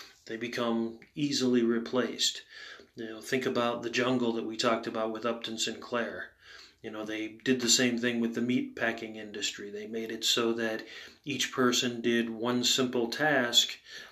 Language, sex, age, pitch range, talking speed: English, male, 30-49, 115-130 Hz, 170 wpm